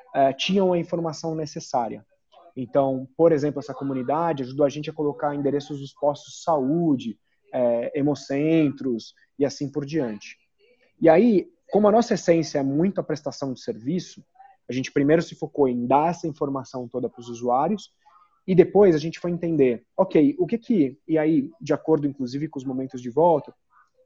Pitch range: 135-180 Hz